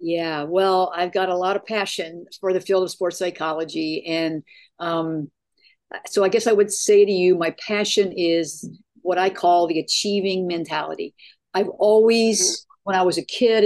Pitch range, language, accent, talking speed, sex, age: 175-215 Hz, English, American, 175 wpm, female, 50-69